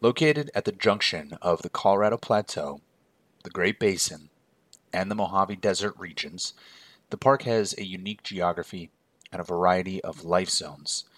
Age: 30-49